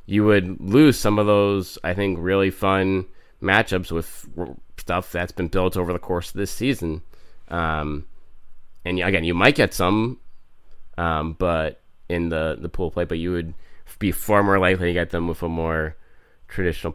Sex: male